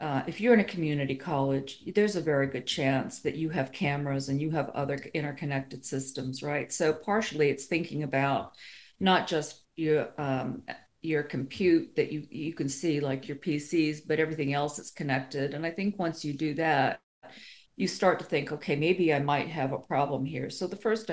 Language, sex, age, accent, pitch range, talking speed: English, female, 50-69, American, 140-170 Hz, 195 wpm